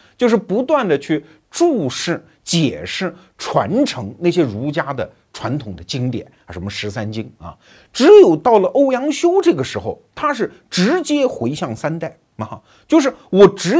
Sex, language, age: male, Chinese, 50-69